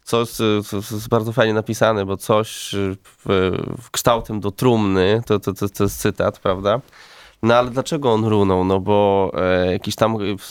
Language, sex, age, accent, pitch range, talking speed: Polish, male, 20-39, native, 105-125 Hz, 155 wpm